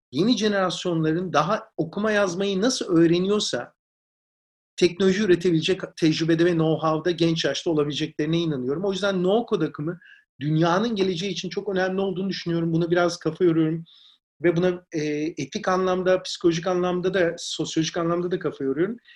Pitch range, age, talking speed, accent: 160-195 Hz, 40-59, 130 wpm, native